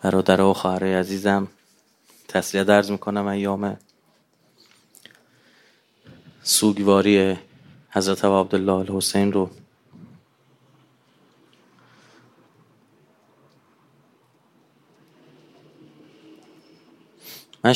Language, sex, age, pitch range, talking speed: Persian, male, 30-49, 95-105 Hz, 45 wpm